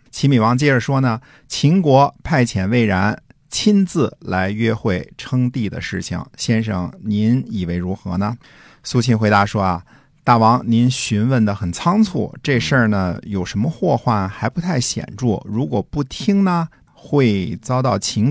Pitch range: 100-135 Hz